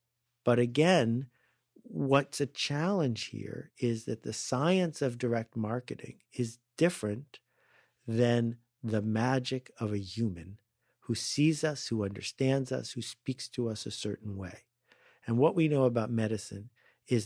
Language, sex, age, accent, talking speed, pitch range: English, male, 50-69, American, 145 wpm, 110-130 Hz